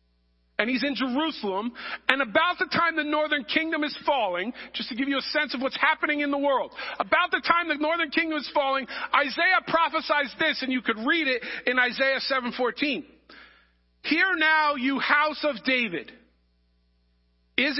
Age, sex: 40-59, male